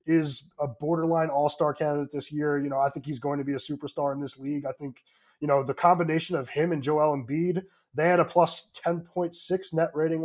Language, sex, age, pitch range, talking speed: English, male, 20-39, 145-170 Hz, 225 wpm